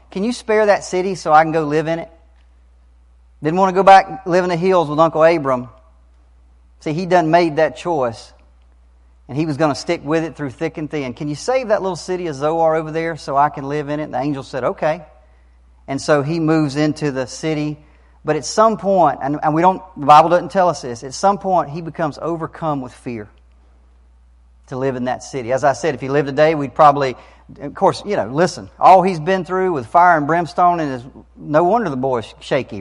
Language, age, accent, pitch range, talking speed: English, 40-59, American, 125-175 Hz, 230 wpm